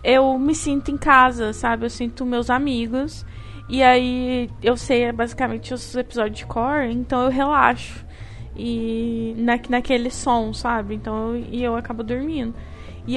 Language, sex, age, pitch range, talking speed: Portuguese, female, 10-29, 230-270 Hz, 155 wpm